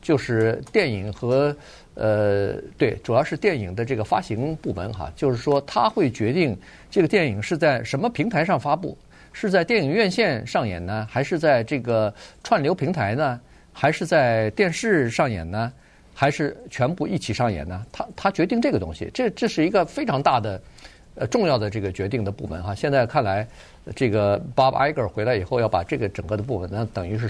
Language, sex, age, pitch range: Chinese, male, 50-69, 100-135 Hz